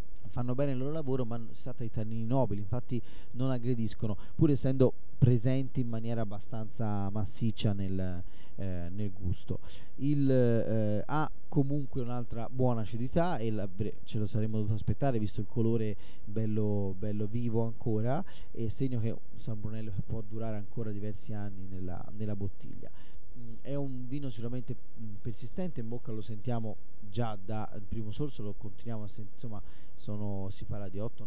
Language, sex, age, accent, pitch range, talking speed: Italian, male, 30-49, native, 105-120 Hz, 150 wpm